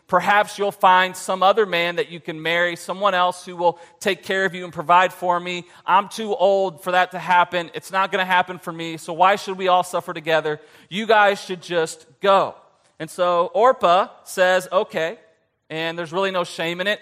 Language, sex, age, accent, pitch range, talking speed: English, male, 30-49, American, 170-195 Hz, 210 wpm